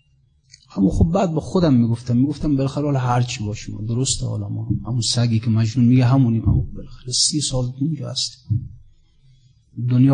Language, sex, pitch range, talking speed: Persian, male, 115-130 Hz, 160 wpm